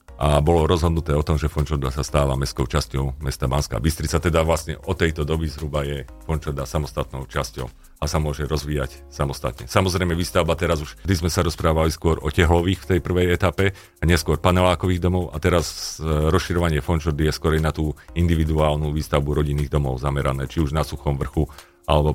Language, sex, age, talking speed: Slovak, male, 40-59, 180 wpm